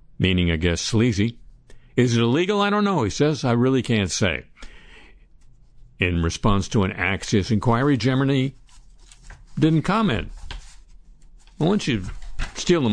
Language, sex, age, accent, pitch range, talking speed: English, male, 60-79, American, 95-130 Hz, 140 wpm